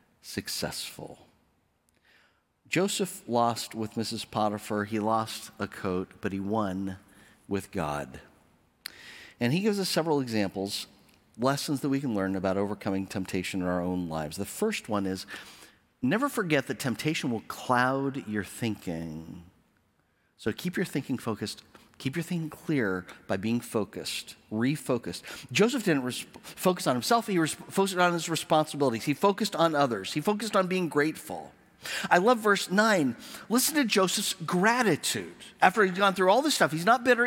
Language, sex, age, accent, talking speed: English, male, 40-59, American, 155 wpm